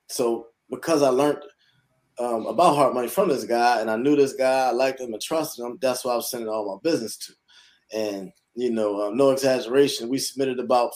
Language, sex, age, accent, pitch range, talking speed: English, male, 20-39, American, 115-140 Hz, 220 wpm